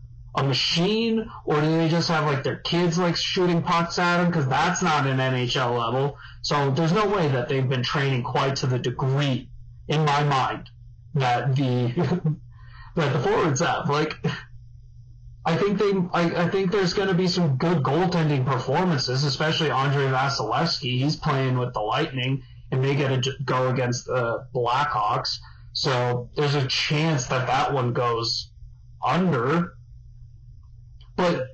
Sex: male